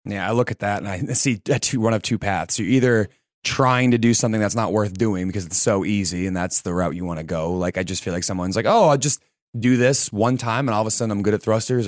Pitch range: 90-110 Hz